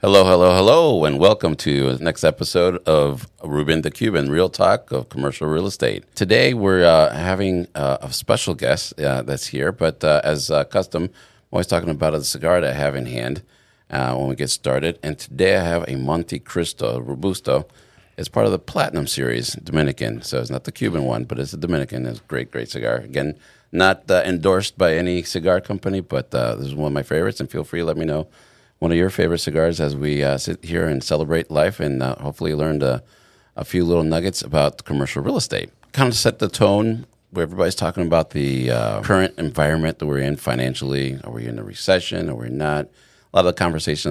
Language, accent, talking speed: English, American, 220 wpm